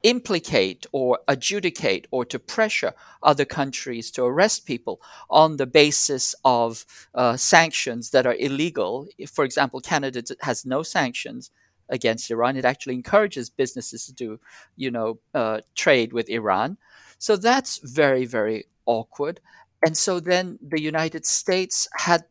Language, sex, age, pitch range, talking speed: English, male, 50-69, 120-165 Hz, 145 wpm